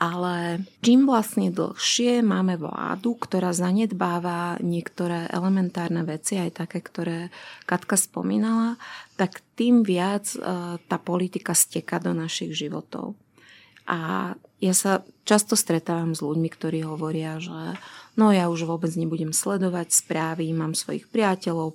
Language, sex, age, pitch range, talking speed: Slovak, female, 30-49, 170-210 Hz, 125 wpm